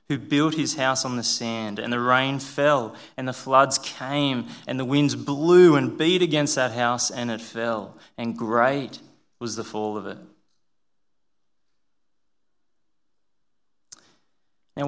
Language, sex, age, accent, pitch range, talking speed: English, male, 20-39, Australian, 115-140 Hz, 140 wpm